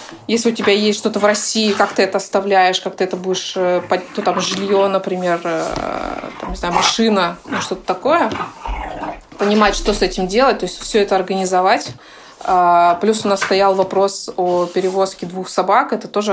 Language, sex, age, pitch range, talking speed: Russian, female, 20-39, 185-220 Hz, 170 wpm